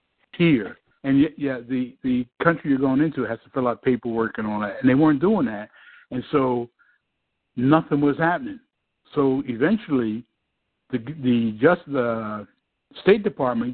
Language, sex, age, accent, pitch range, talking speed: English, male, 60-79, American, 125-145 Hz, 155 wpm